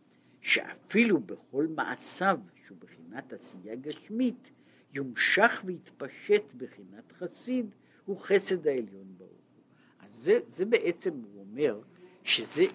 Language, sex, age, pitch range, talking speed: Hebrew, male, 60-79, 130-210 Hz, 100 wpm